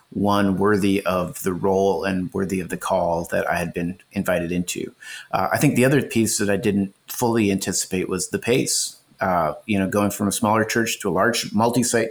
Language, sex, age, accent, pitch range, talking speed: English, male, 30-49, American, 95-110 Hz, 210 wpm